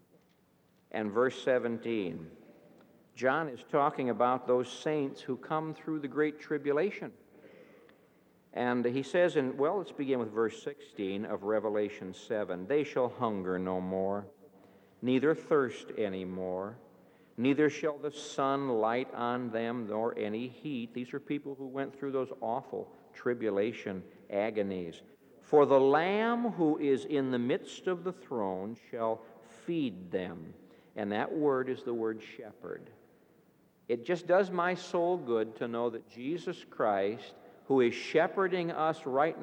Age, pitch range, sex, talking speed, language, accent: 60-79, 110-150 Hz, male, 145 wpm, English, American